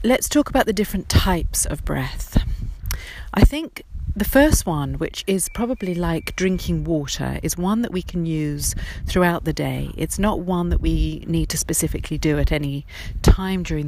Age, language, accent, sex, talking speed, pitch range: 40-59, English, British, female, 175 wpm, 135-190 Hz